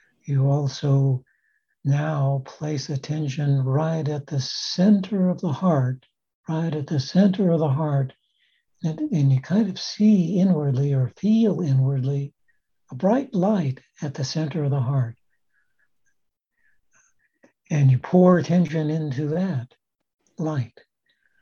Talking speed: 125 wpm